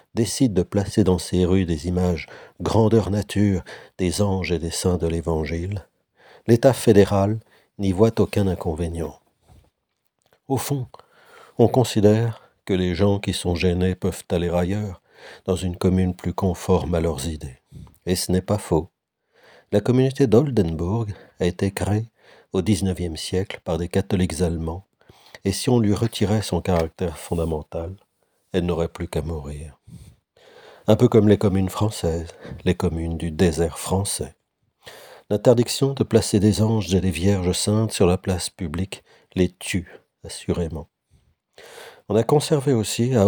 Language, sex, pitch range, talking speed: French, male, 85-105 Hz, 150 wpm